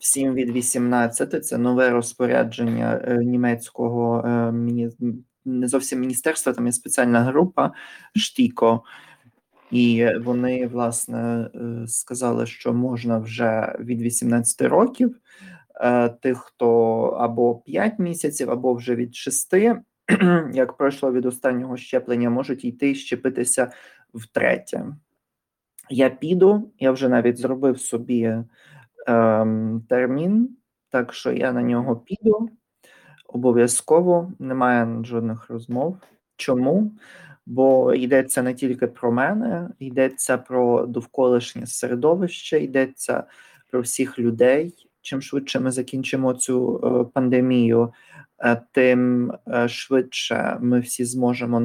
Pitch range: 120-130 Hz